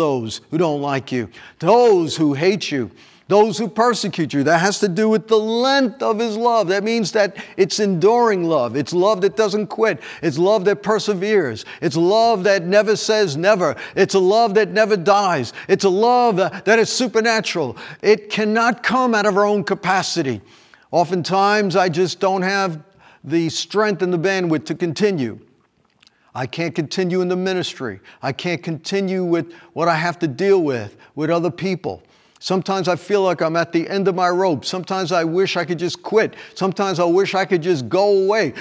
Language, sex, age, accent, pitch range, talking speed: English, male, 50-69, American, 155-205 Hz, 190 wpm